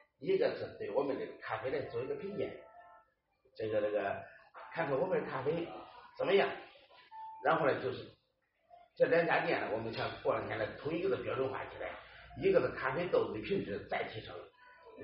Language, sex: Chinese, male